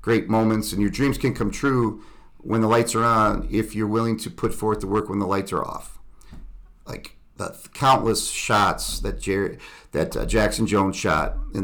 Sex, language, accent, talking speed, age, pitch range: male, English, American, 200 wpm, 50-69, 95-115 Hz